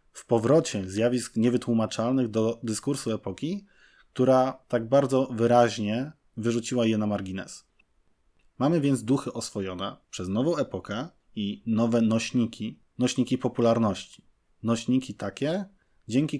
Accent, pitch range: native, 100-130 Hz